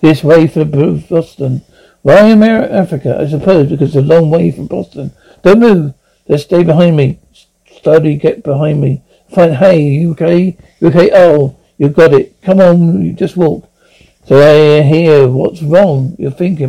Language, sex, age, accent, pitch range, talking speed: English, male, 60-79, British, 145-175 Hz, 175 wpm